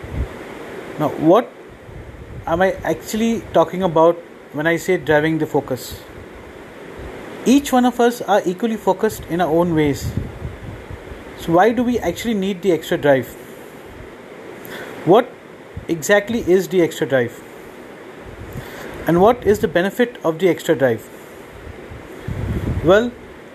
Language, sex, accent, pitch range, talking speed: English, male, Indian, 165-225 Hz, 125 wpm